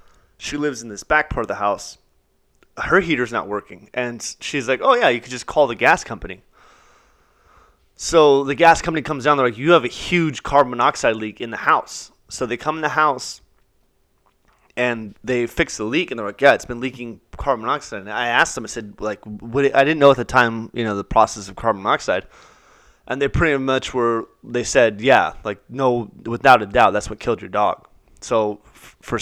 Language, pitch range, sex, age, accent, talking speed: English, 110-140 Hz, male, 20-39, American, 210 wpm